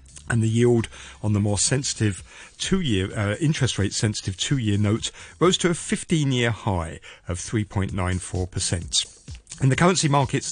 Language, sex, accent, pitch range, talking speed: English, male, British, 95-130 Hz, 135 wpm